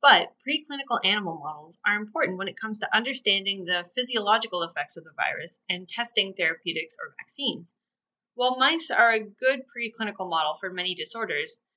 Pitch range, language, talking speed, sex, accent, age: 180-235 Hz, English, 165 wpm, female, American, 30-49